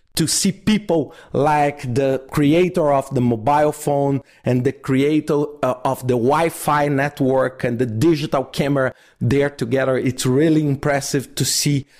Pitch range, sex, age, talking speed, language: 125-150 Hz, male, 40-59, 150 wpm, English